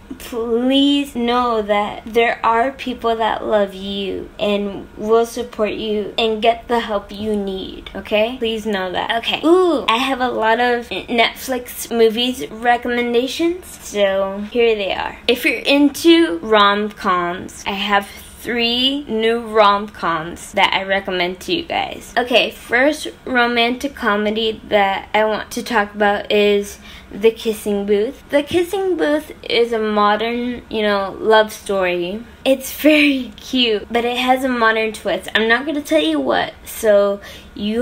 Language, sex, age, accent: English, female, 20-39, American